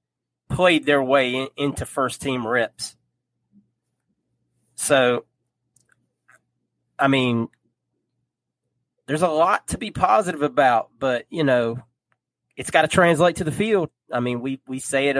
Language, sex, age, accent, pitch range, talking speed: English, male, 30-49, American, 120-145 Hz, 130 wpm